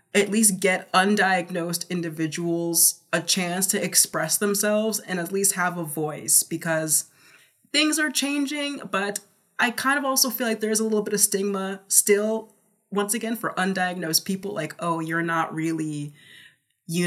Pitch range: 160-210 Hz